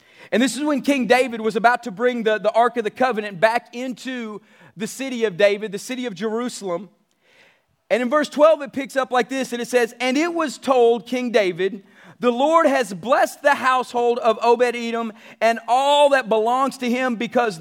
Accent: American